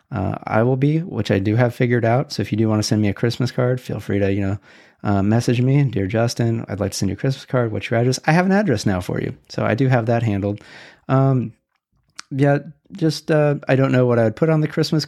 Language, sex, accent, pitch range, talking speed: English, male, American, 105-145 Hz, 275 wpm